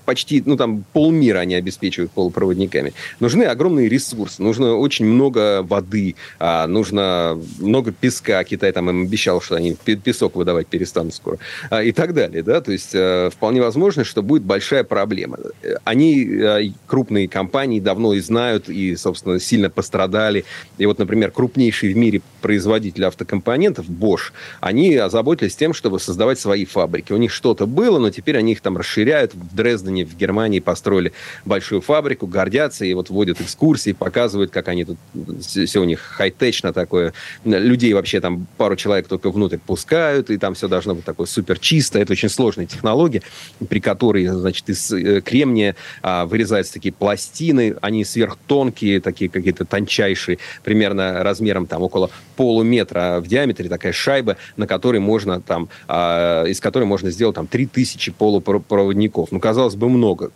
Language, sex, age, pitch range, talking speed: Russian, male, 30-49, 95-120 Hz, 150 wpm